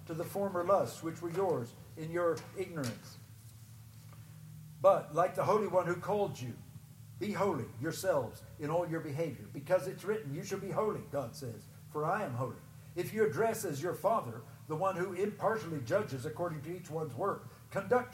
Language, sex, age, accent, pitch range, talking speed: English, male, 60-79, American, 140-195 Hz, 180 wpm